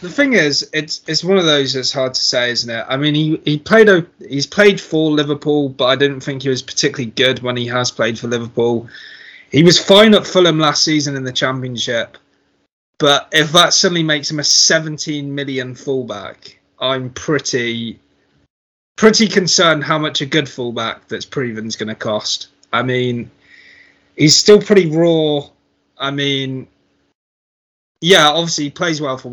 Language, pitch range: English, 120-155 Hz